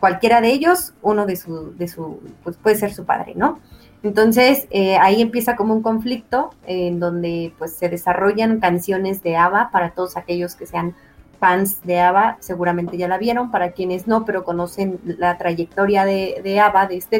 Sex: female